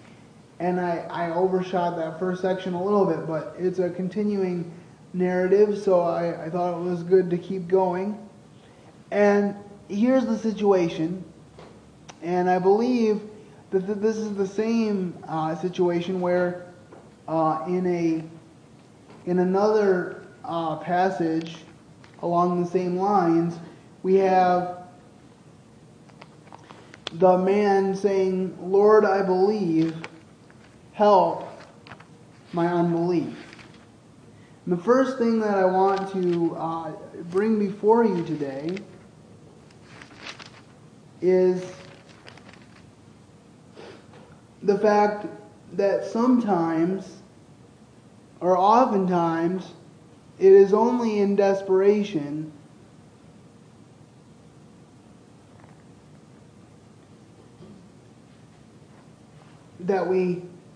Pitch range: 165-195 Hz